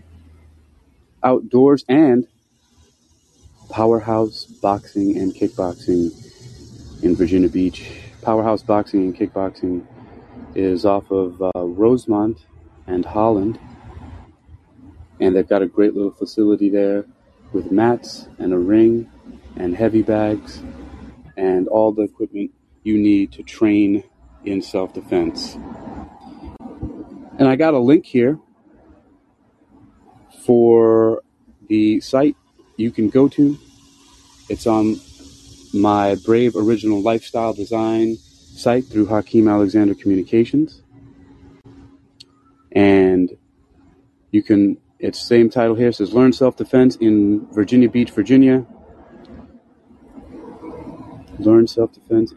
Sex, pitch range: male, 100-125 Hz